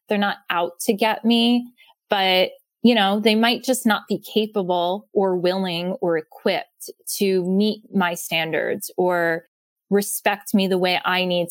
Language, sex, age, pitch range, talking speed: English, female, 20-39, 175-215 Hz, 155 wpm